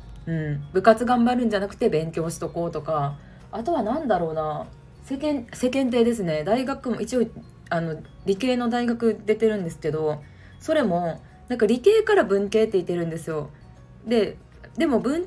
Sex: female